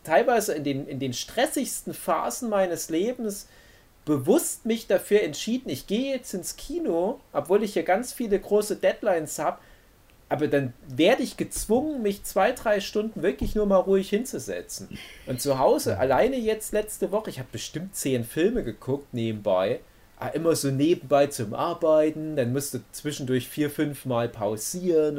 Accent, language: German, German